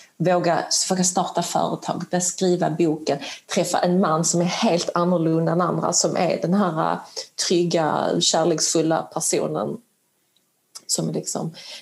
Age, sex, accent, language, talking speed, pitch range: 30-49, female, native, Swedish, 115 wpm, 170-195 Hz